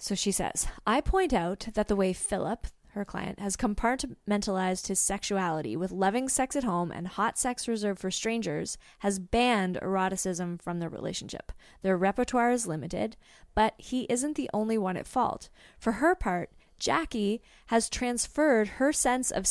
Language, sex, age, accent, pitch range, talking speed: English, female, 20-39, American, 190-240 Hz, 165 wpm